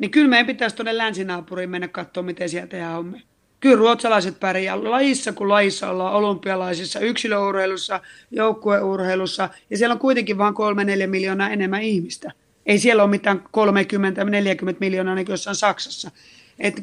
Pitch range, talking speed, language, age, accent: 190-240 Hz, 145 wpm, Finnish, 30-49, native